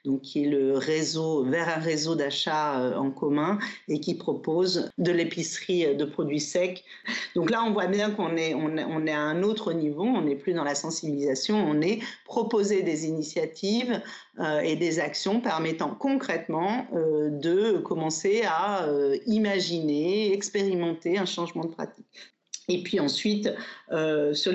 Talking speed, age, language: 150 wpm, 40-59, French